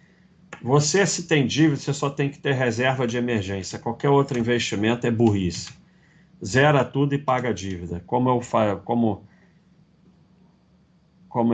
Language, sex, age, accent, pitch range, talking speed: Portuguese, male, 40-59, Brazilian, 110-140 Hz, 140 wpm